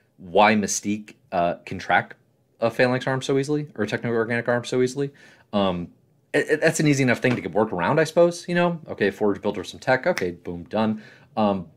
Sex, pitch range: male, 95-135 Hz